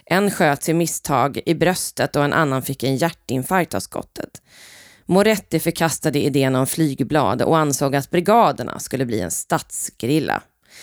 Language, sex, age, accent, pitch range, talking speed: Swedish, female, 20-39, native, 145-180 Hz, 150 wpm